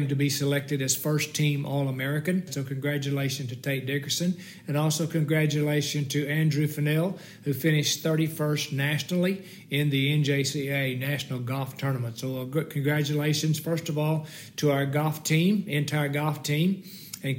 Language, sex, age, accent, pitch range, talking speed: English, male, 60-79, American, 135-160 Hz, 145 wpm